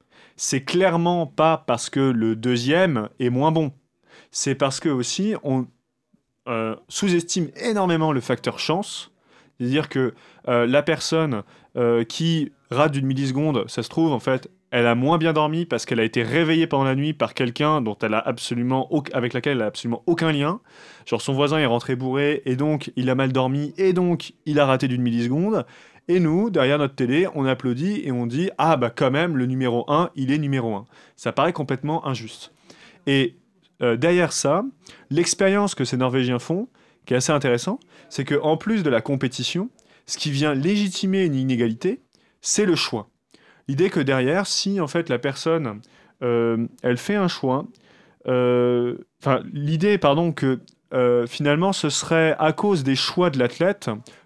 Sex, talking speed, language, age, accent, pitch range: male, 180 wpm, French, 20-39, French, 125-165 Hz